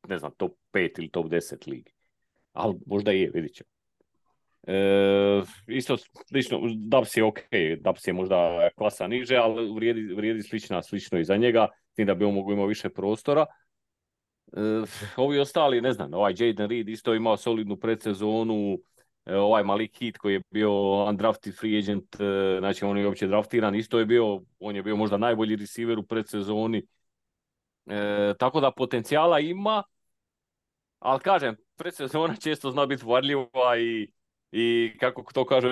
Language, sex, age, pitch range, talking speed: Croatian, male, 40-59, 100-125 Hz, 165 wpm